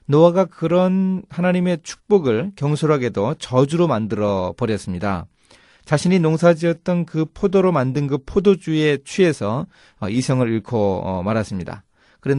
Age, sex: 30-49, male